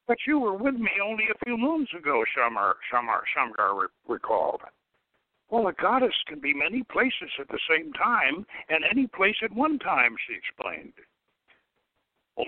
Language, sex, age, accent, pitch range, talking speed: English, male, 60-79, American, 150-215 Hz, 160 wpm